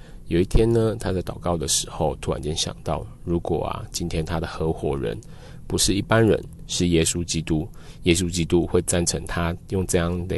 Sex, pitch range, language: male, 80-90 Hz, Chinese